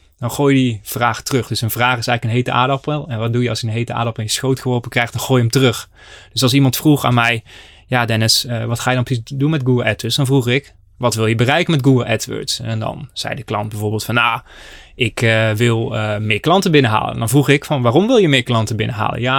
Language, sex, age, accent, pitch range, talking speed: Dutch, male, 20-39, Dutch, 115-130 Hz, 270 wpm